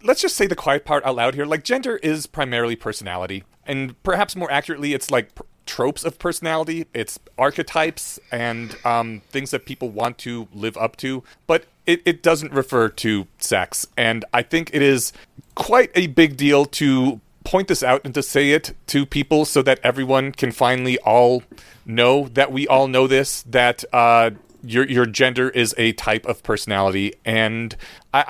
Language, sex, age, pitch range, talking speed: English, male, 30-49, 110-140 Hz, 180 wpm